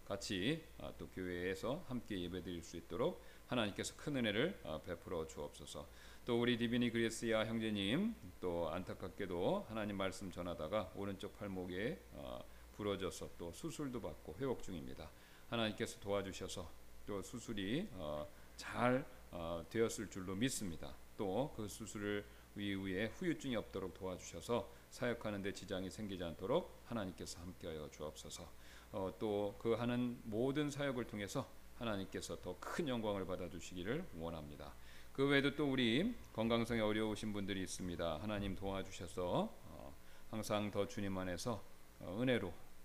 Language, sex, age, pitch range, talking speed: English, male, 40-59, 90-115 Hz, 110 wpm